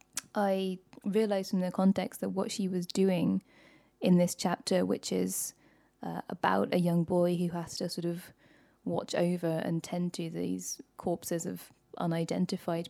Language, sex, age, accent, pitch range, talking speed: English, female, 10-29, British, 175-190 Hz, 160 wpm